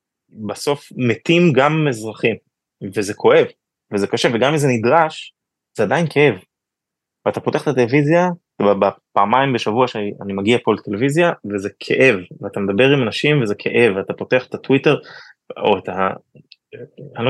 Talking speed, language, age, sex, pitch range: 140 wpm, Hebrew, 20-39, male, 105-150 Hz